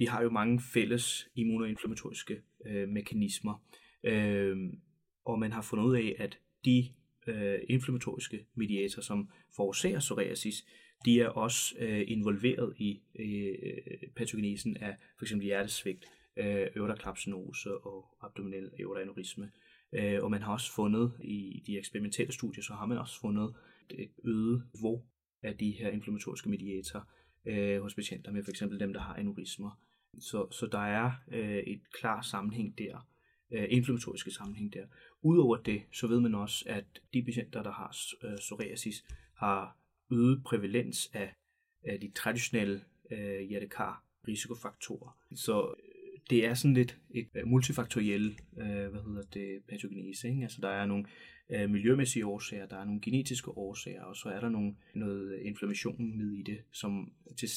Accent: native